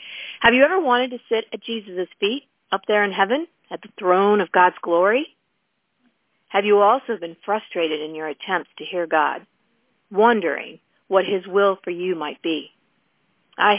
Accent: American